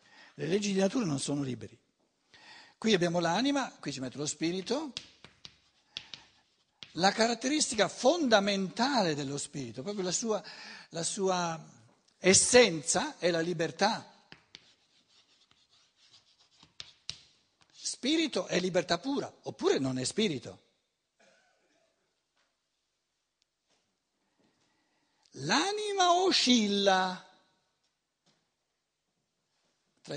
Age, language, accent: 60-79, Italian, native